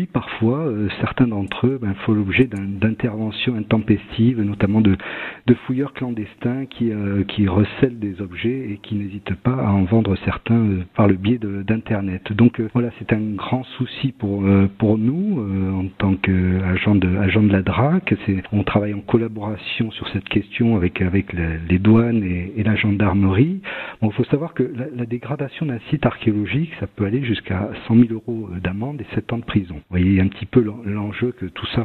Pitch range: 100-120 Hz